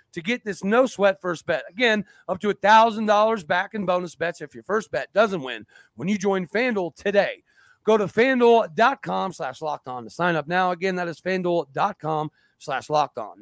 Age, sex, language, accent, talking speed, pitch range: 40-59, male, English, American, 190 wpm, 170-225 Hz